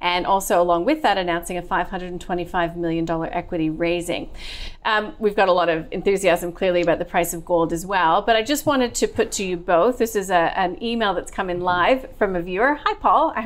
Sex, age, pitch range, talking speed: female, 30-49, 175-220 Hz, 220 wpm